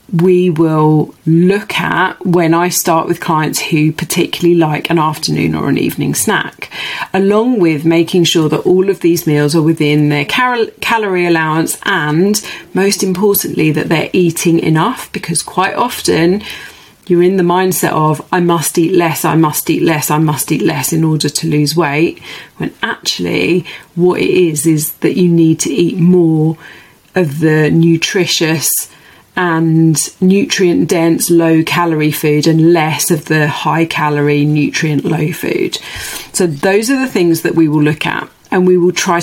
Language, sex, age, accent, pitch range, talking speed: English, female, 30-49, British, 155-180 Hz, 165 wpm